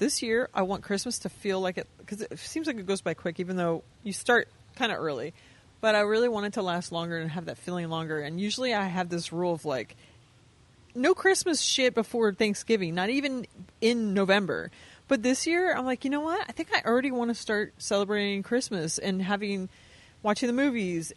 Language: English